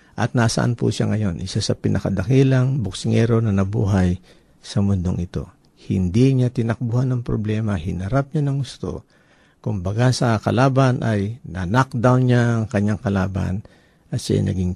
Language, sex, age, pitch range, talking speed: Filipino, male, 50-69, 95-125 Hz, 140 wpm